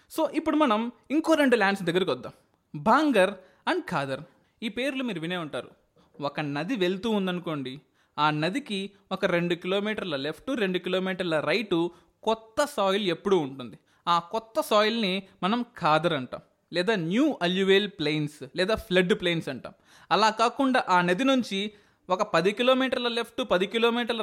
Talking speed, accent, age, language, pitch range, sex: 145 wpm, native, 20-39, Telugu, 175-235 Hz, male